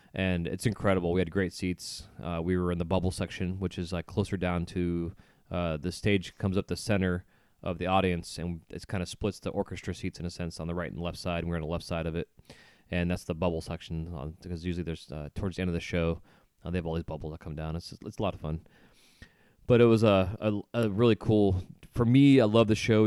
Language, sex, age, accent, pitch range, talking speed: English, male, 20-39, American, 85-100 Hz, 265 wpm